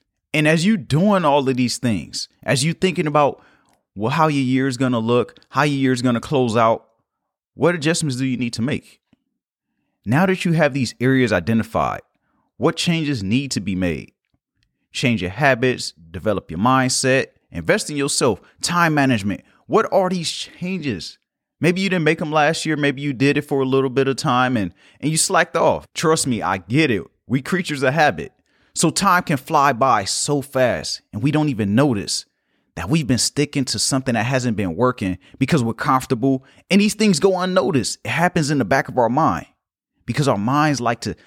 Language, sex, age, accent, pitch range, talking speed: English, male, 30-49, American, 125-160 Hz, 200 wpm